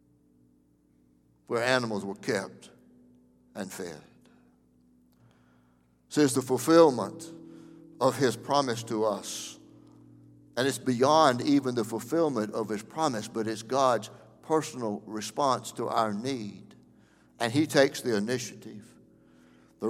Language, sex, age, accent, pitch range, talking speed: English, male, 60-79, American, 105-140 Hz, 115 wpm